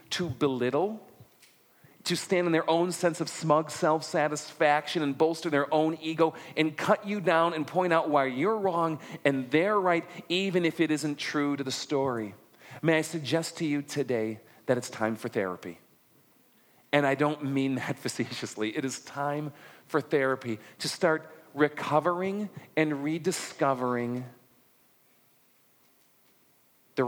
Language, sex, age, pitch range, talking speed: English, male, 40-59, 120-160 Hz, 145 wpm